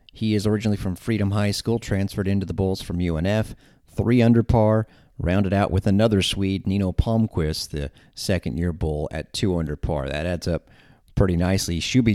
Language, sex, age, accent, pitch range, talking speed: English, male, 40-59, American, 90-110 Hz, 180 wpm